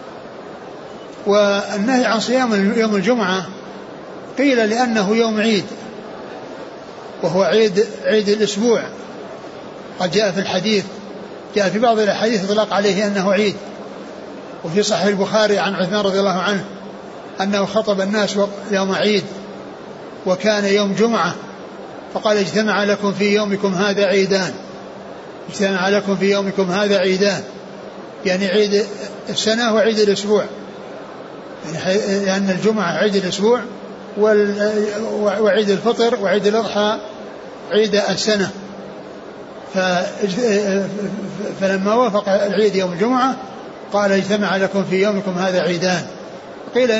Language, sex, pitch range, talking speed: Arabic, male, 195-215 Hz, 105 wpm